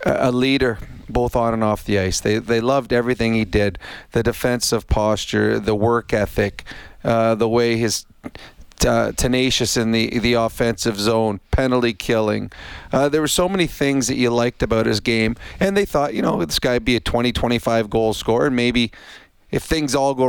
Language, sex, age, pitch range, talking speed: English, male, 40-59, 115-130 Hz, 185 wpm